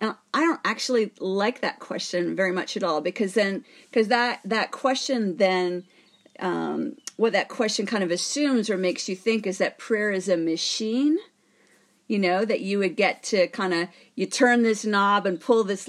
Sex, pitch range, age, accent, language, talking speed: female, 185-240 Hz, 40-59, American, English, 195 wpm